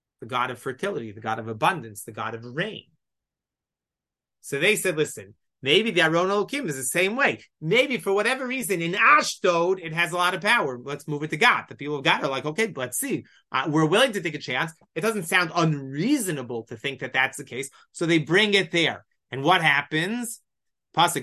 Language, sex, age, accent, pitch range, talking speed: English, male, 30-49, American, 150-210 Hz, 210 wpm